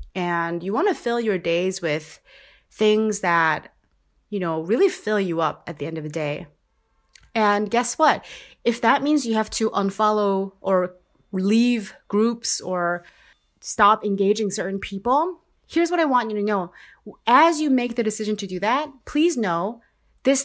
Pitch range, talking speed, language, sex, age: 190-245 Hz, 170 wpm, English, female, 30-49